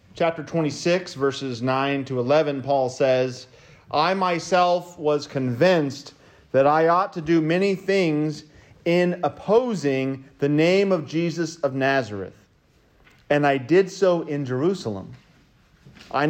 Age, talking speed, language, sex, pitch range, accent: 40-59, 125 wpm, English, male, 130-175 Hz, American